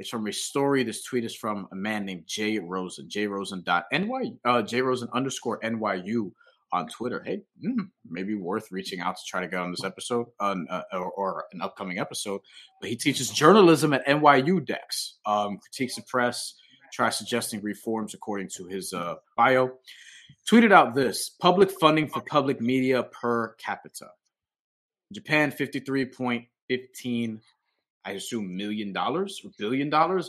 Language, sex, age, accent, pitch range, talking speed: English, male, 30-49, American, 105-135 Hz, 155 wpm